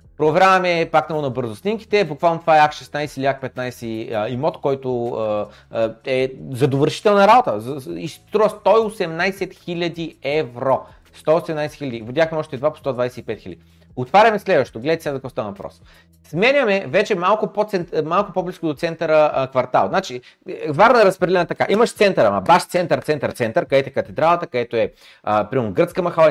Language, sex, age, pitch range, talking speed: Bulgarian, male, 30-49, 130-175 Hz, 145 wpm